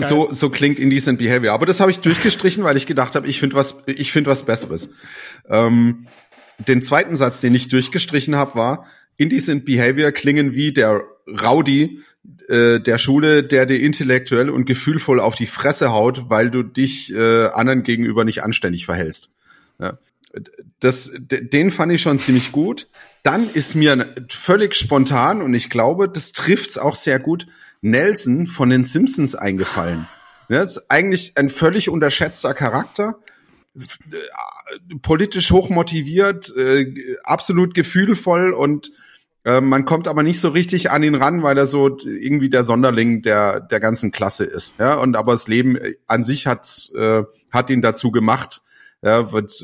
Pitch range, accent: 120-155 Hz, German